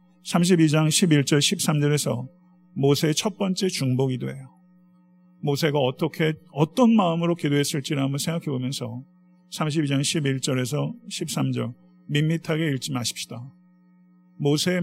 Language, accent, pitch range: Korean, native, 135-170 Hz